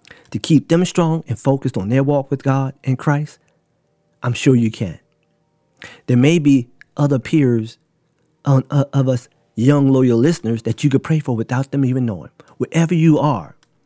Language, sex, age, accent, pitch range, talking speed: English, male, 40-59, American, 115-150 Hz, 175 wpm